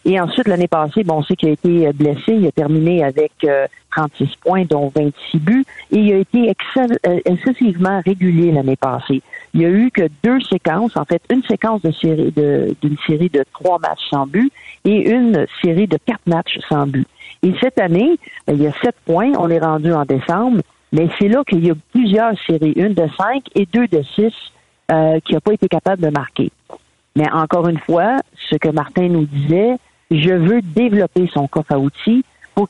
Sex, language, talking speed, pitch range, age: female, French, 200 wpm, 150-205 Hz, 50-69